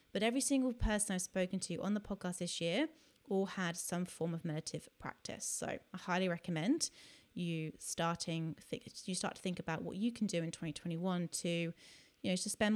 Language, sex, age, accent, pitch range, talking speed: English, female, 30-49, British, 180-220 Hz, 200 wpm